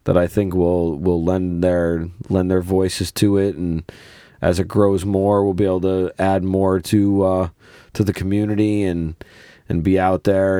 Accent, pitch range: American, 75-95 Hz